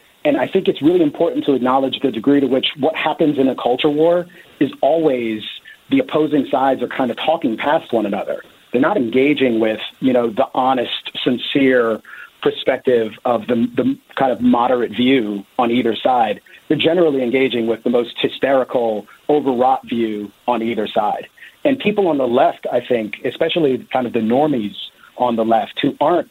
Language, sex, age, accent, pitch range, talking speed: English, male, 40-59, American, 115-135 Hz, 180 wpm